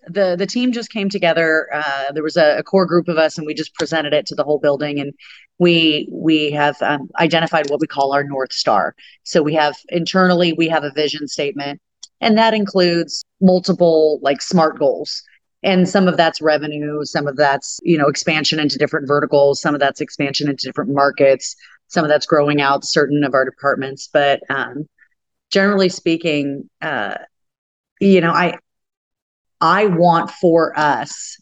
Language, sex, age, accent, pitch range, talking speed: English, female, 30-49, American, 140-165 Hz, 180 wpm